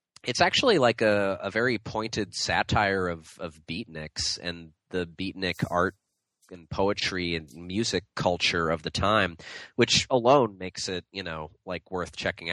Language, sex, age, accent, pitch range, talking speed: English, male, 20-39, American, 90-115 Hz, 155 wpm